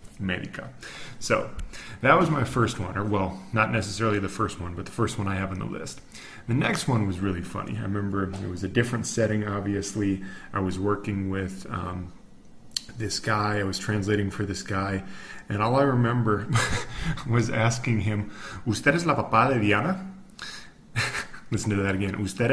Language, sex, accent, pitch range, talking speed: English, male, American, 100-125 Hz, 180 wpm